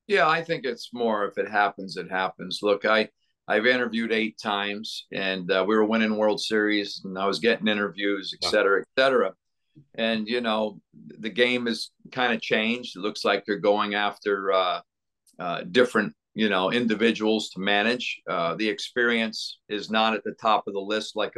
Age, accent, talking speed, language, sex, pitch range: 50-69, American, 185 wpm, English, male, 100-120 Hz